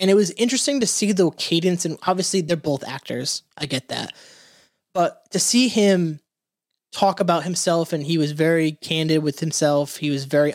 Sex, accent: male, American